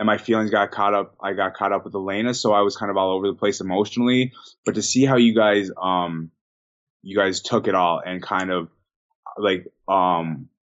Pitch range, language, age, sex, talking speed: 95-110 Hz, English, 20-39, male, 220 wpm